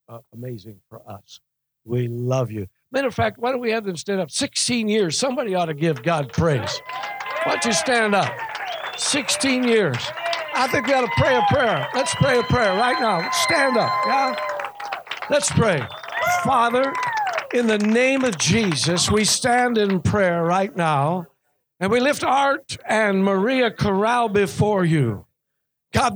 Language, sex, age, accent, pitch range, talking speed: English, male, 60-79, American, 185-250 Hz, 165 wpm